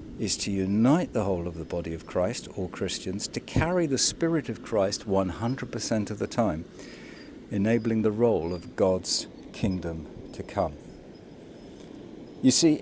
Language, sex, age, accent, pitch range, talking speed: English, male, 50-69, British, 95-130 Hz, 150 wpm